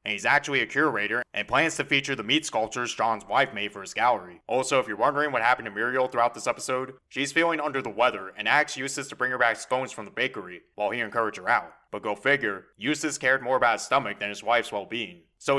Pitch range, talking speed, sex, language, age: 115-145 Hz, 245 wpm, male, English, 20-39